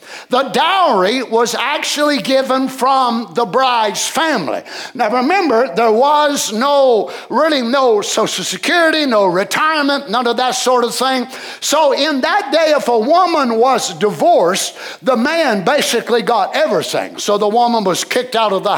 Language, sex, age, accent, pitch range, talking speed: English, male, 60-79, American, 240-300 Hz, 155 wpm